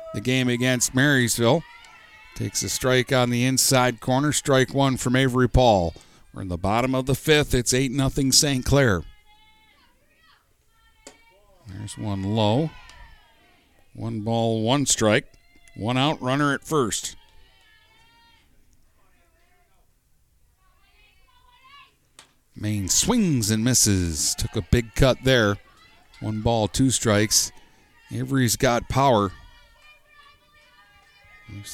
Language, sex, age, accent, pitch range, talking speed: English, male, 50-69, American, 115-155 Hz, 105 wpm